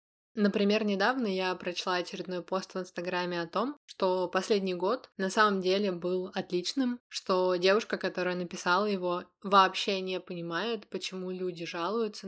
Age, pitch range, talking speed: 20-39, 175-195 Hz, 140 wpm